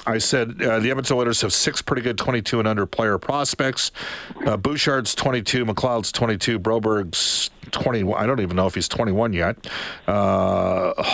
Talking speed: 155 wpm